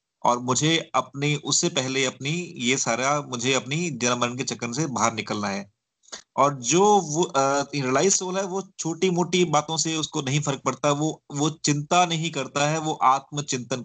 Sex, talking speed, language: male, 180 wpm, Hindi